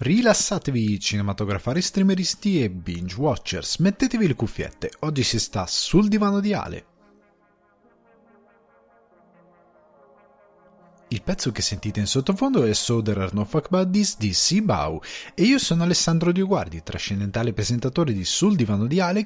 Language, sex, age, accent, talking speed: Italian, male, 30-49, native, 130 wpm